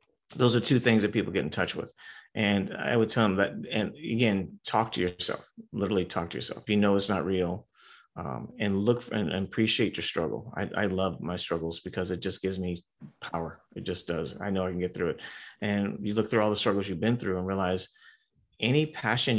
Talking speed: 225 wpm